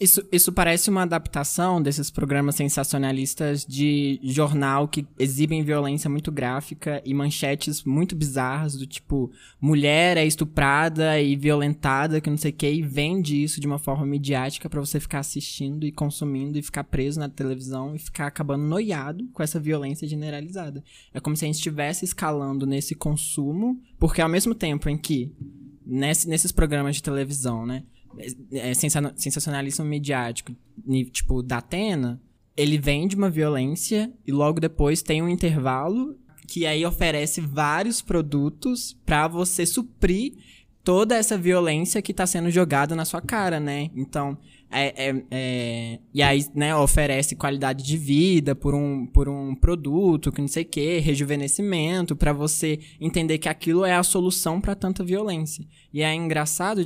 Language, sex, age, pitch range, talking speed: Portuguese, male, 20-39, 140-170 Hz, 155 wpm